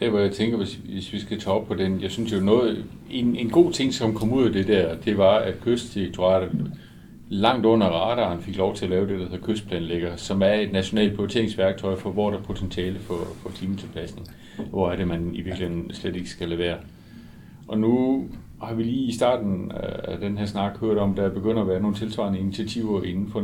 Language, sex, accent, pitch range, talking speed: Danish, male, native, 95-115 Hz, 220 wpm